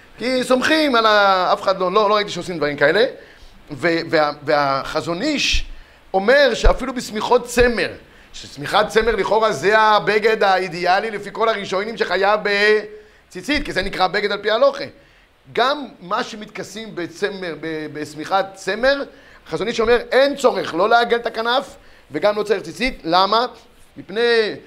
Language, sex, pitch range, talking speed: Hebrew, male, 185-235 Hz, 140 wpm